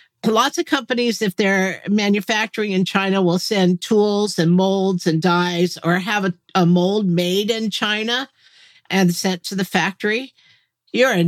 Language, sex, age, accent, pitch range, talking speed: English, female, 50-69, American, 175-230 Hz, 155 wpm